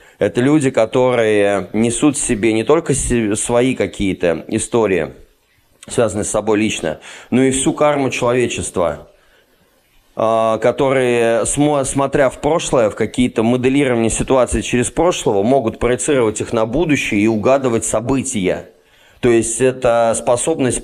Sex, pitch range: male, 110-130 Hz